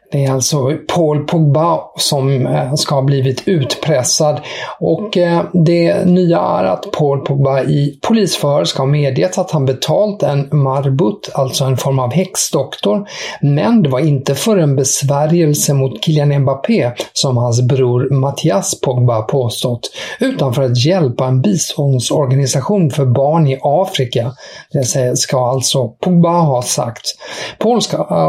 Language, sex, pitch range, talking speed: English, male, 130-165 Hz, 140 wpm